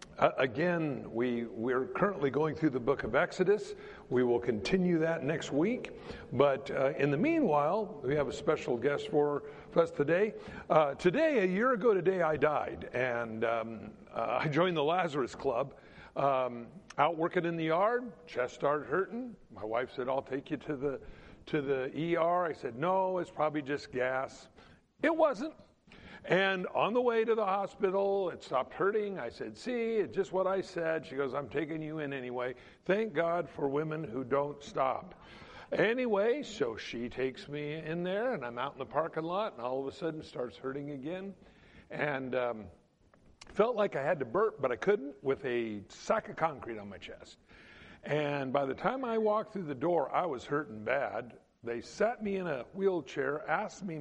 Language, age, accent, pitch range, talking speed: English, 60-79, American, 135-190 Hz, 190 wpm